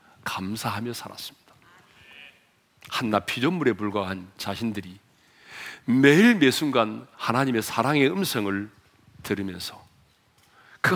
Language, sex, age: Korean, male, 40-59